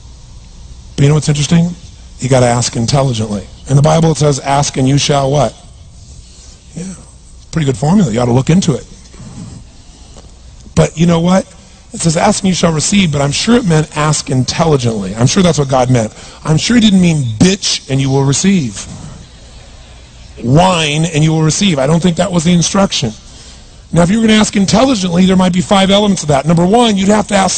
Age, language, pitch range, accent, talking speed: 40-59, English, 140-195 Hz, American, 200 wpm